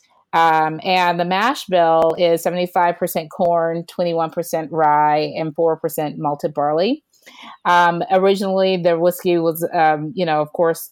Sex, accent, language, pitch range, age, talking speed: female, American, English, 160-185 Hz, 30-49, 130 wpm